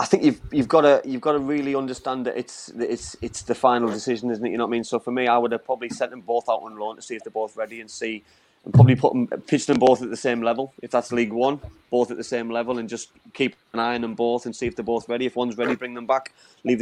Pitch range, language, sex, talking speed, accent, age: 115-130 Hz, English, male, 305 wpm, British, 20-39